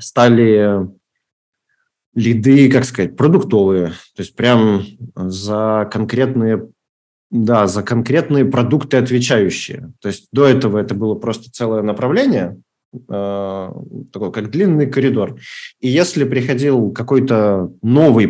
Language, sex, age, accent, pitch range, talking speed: Russian, male, 30-49, native, 105-135 Hz, 110 wpm